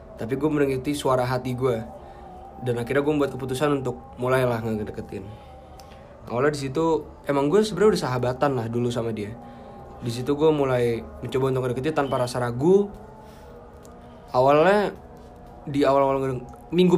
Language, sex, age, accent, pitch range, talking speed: Indonesian, male, 20-39, native, 115-145 Hz, 140 wpm